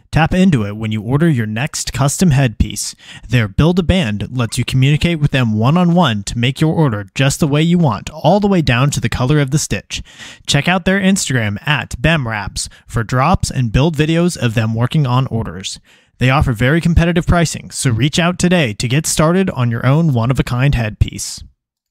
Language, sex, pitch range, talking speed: English, male, 110-160 Hz, 190 wpm